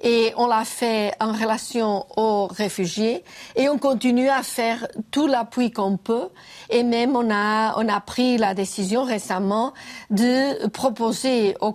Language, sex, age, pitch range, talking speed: French, female, 50-69, 210-240 Hz, 155 wpm